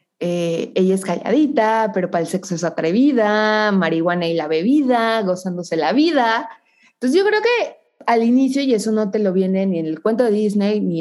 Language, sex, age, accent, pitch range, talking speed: Spanish, female, 20-39, Mexican, 180-220 Hz, 195 wpm